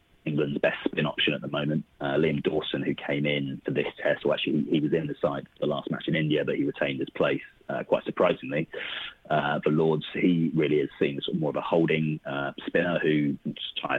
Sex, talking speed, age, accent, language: male, 230 wpm, 30-49, British, English